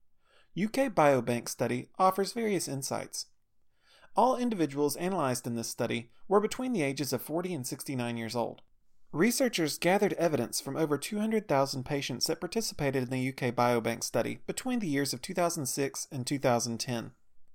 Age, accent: 30-49, American